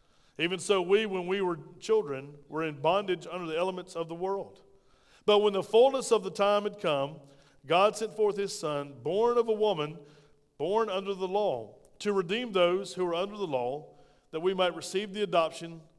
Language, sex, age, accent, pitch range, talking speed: English, male, 40-59, American, 145-190 Hz, 195 wpm